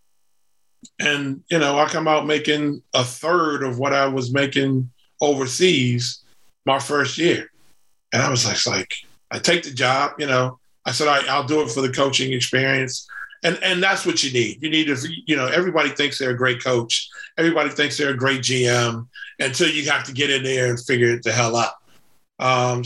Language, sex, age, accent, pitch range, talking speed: English, male, 40-59, American, 130-150 Hz, 200 wpm